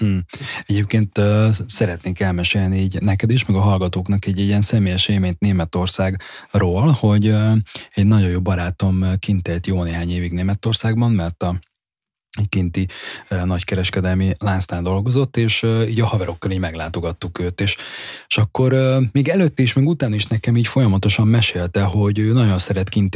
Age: 20-39